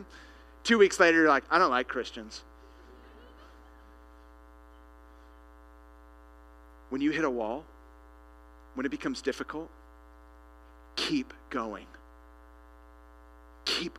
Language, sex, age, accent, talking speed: English, male, 40-59, American, 90 wpm